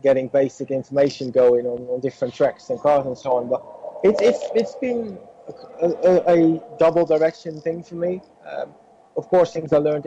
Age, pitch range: 30-49, 130-170 Hz